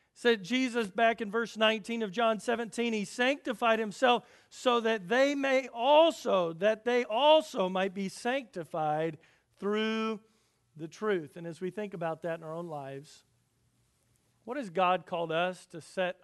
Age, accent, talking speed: 40-59, American, 160 wpm